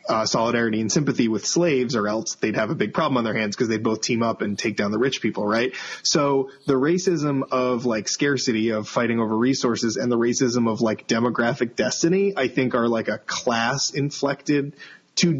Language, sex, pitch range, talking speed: English, male, 115-140 Hz, 205 wpm